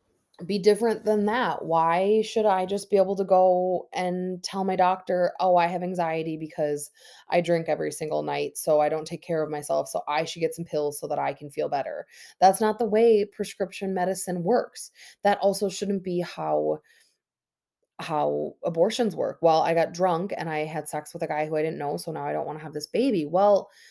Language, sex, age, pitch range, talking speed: English, female, 20-39, 145-190 Hz, 215 wpm